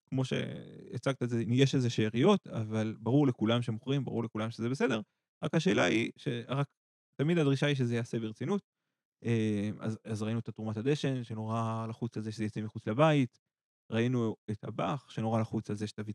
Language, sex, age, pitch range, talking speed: Hebrew, male, 20-39, 110-135 Hz, 170 wpm